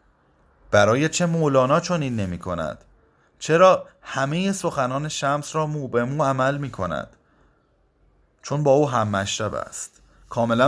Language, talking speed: Persian, 135 wpm